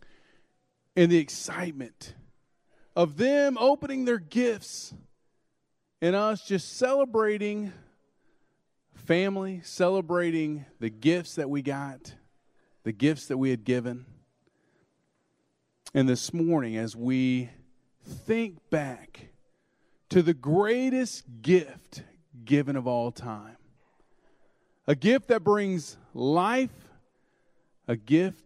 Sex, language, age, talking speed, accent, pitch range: male, English, 40-59, 100 wpm, American, 135-195 Hz